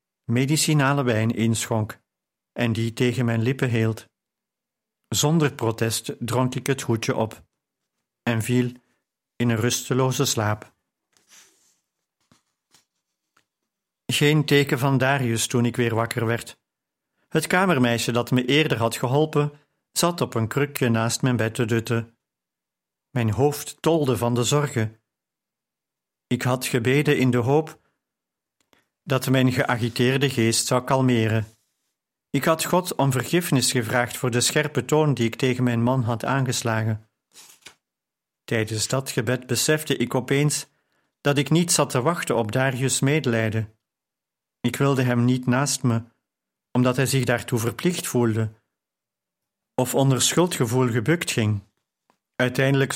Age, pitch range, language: 50-69, 115-140 Hz, Dutch